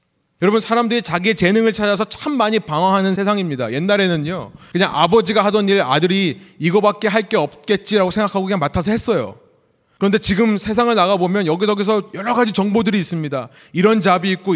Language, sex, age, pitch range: Korean, male, 30-49, 170-220 Hz